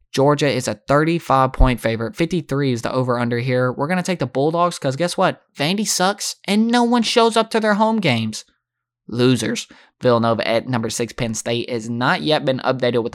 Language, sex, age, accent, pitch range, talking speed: English, male, 20-39, American, 120-155 Hz, 205 wpm